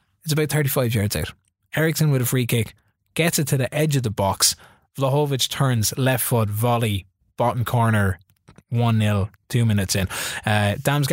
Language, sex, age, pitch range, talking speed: English, male, 20-39, 110-130 Hz, 160 wpm